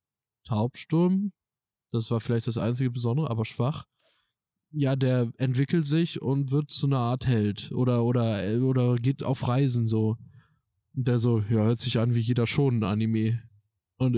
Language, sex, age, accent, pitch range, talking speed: German, male, 20-39, German, 110-130 Hz, 165 wpm